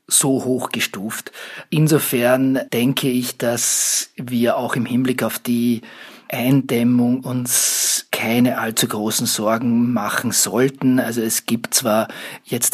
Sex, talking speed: male, 125 wpm